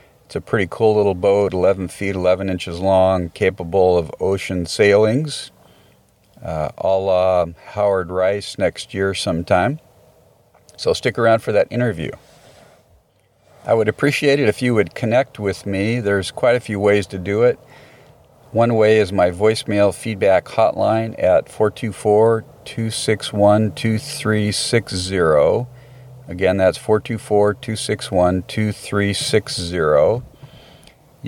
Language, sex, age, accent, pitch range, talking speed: English, male, 50-69, American, 95-115 Hz, 115 wpm